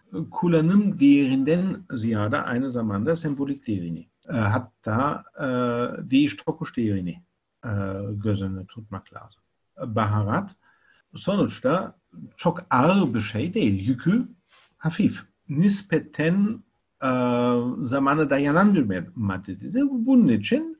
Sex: male